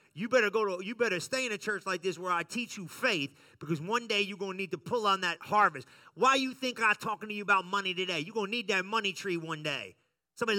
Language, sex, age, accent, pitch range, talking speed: English, male, 30-49, American, 200-270 Hz, 280 wpm